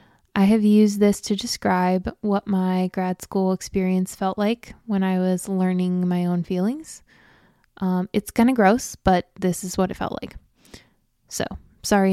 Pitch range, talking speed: 185-215 Hz, 170 wpm